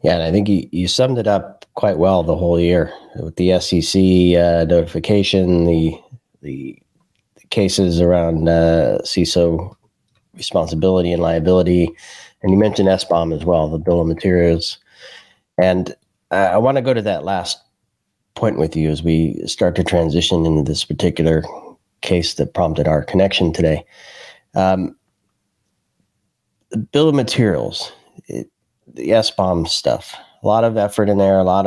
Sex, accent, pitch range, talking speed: male, American, 85-100 Hz, 155 wpm